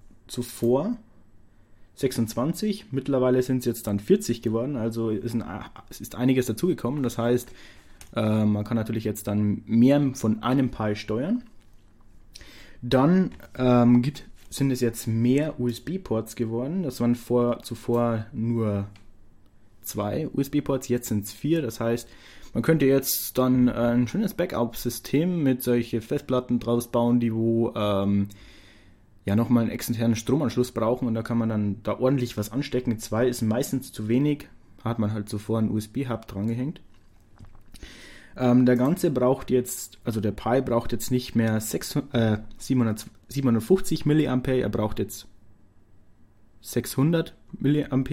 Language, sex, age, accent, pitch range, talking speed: German, male, 20-39, German, 105-130 Hz, 145 wpm